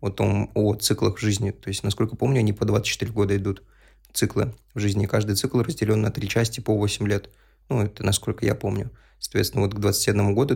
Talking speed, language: 200 wpm, Russian